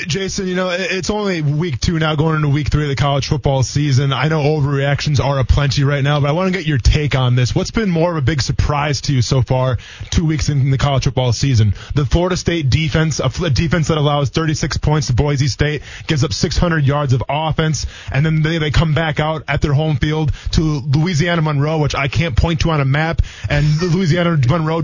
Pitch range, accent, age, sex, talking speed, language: 135-165 Hz, American, 20-39, male, 230 wpm, English